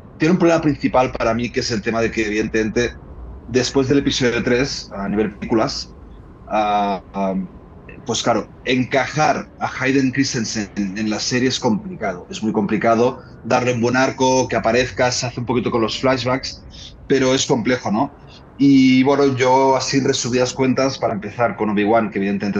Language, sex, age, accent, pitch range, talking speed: Spanish, male, 30-49, Spanish, 105-130 Hz, 180 wpm